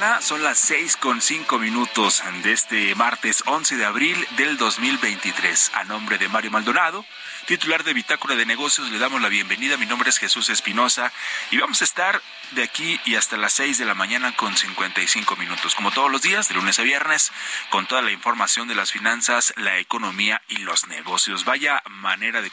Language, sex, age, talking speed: Spanish, male, 30-49, 190 wpm